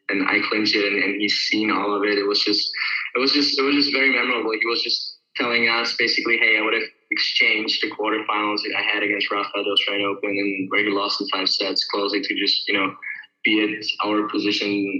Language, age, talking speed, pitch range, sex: English, 10-29, 230 wpm, 100-110 Hz, male